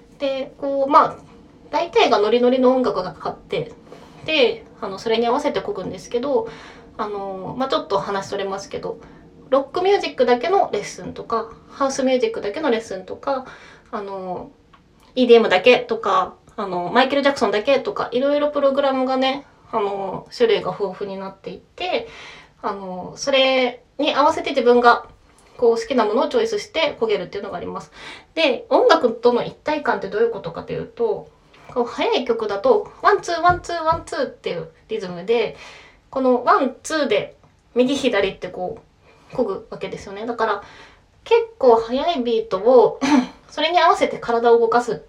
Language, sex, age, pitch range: Japanese, female, 20-39, 230-335 Hz